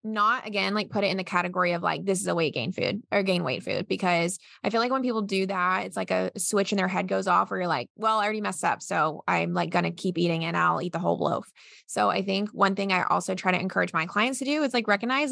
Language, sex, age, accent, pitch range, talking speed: English, female, 20-39, American, 175-210 Hz, 295 wpm